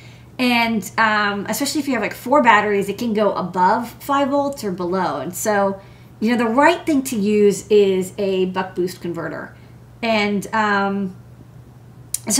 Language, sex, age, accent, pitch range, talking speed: English, female, 40-59, American, 190-230 Hz, 165 wpm